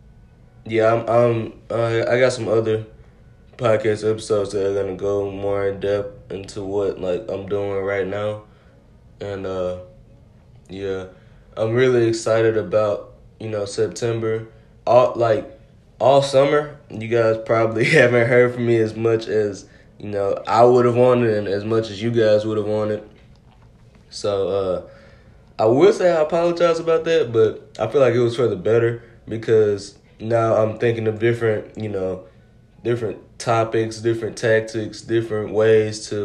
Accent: American